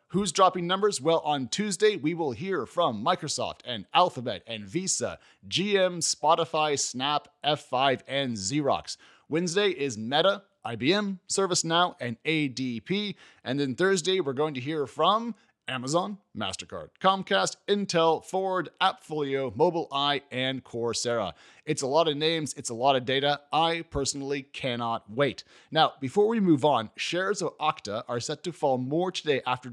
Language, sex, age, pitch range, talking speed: English, male, 30-49, 130-175 Hz, 150 wpm